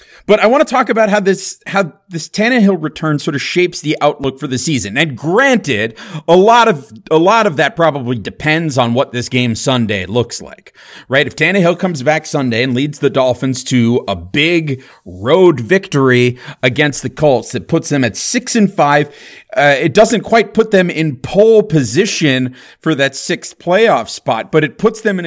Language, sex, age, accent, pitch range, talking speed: English, male, 30-49, American, 120-165 Hz, 195 wpm